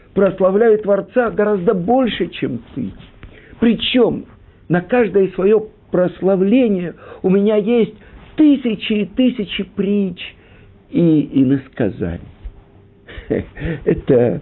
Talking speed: 90 wpm